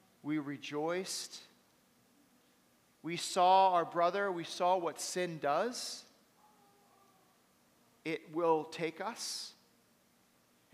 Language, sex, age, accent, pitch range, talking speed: English, male, 40-59, American, 165-245 Hz, 90 wpm